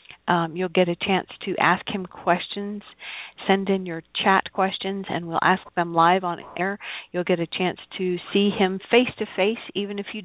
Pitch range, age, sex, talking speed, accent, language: 180-220 Hz, 50-69, female, 185 wpm, American, English